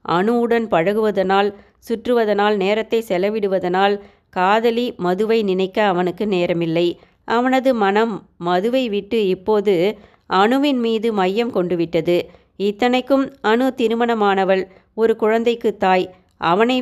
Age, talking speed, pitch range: 30-49, 95 wpm, 190-235 Hz